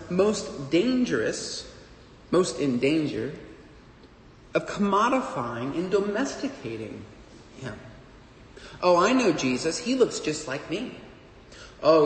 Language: English